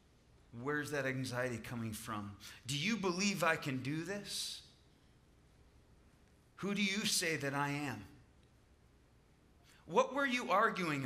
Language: English